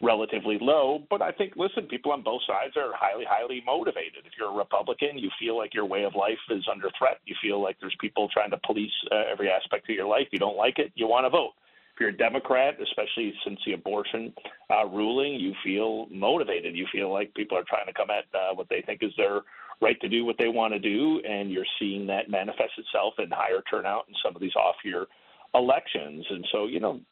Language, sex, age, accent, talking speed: English, male, 40-59, American, 230 wpm